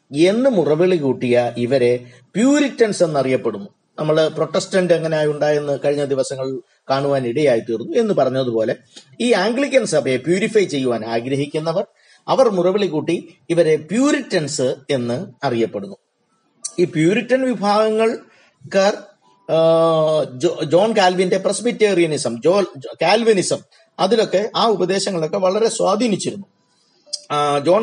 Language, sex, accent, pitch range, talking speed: Malayalam, male, native, 130-190 Hz, 90 wpm